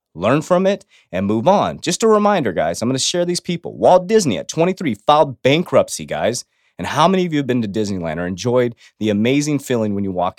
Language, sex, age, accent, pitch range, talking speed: English, male, 30-49, American, 110-170 Hz, 230 wpm